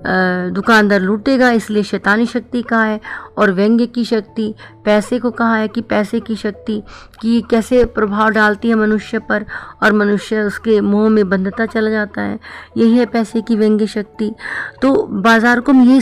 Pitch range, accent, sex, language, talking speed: 205-240 Hz, native, female, Hindi, 170 wpm